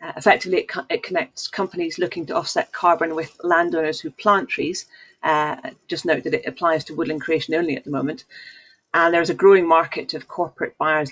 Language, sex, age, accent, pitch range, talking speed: English, female, 40-59, British, 150-175 Hz, 195 wpm